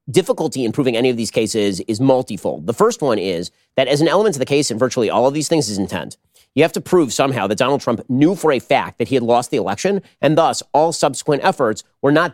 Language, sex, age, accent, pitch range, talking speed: English, male, 30-49, American, 120-160 Hz, 260 wpm